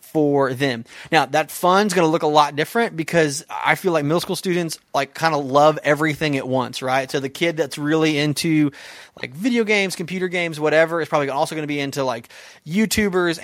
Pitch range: 145-180 Hz